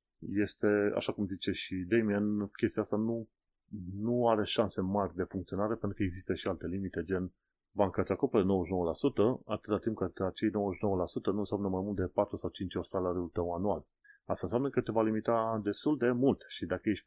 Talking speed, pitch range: 195 wpm, 90-115 Hz